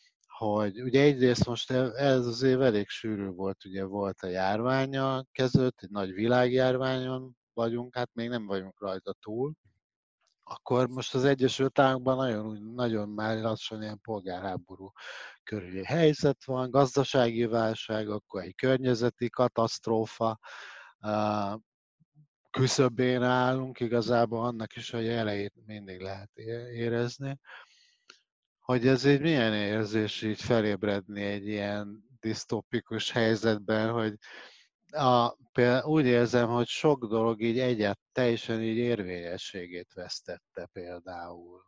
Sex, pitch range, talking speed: male, 105-125 Hz, 115 wpm